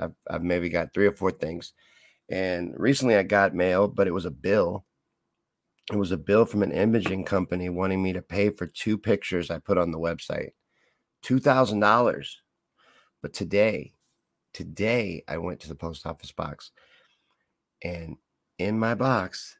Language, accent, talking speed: English, American, 160 wpm